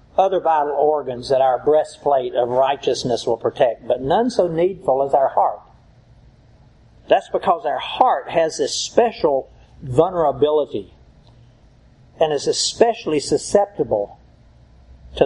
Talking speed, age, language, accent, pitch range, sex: 120 wpm, 60-79, English, American, 125-170 Hz, male